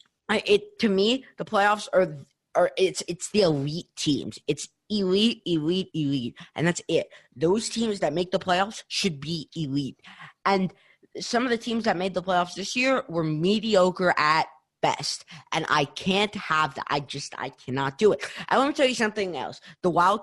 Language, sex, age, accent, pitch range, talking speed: English, female, 20-39, American, 155-205 Hz, 190 wpm